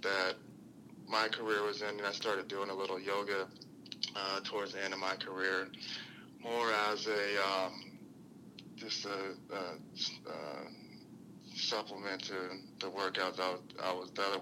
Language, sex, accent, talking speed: English, male, American, 155 wpm